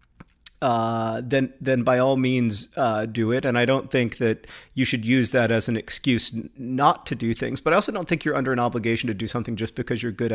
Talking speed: 240 wpm